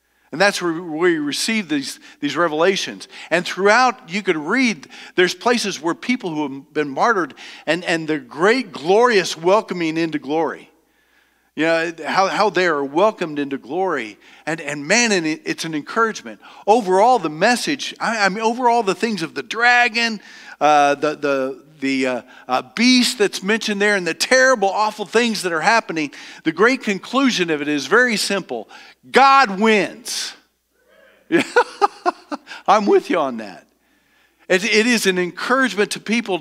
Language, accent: English, American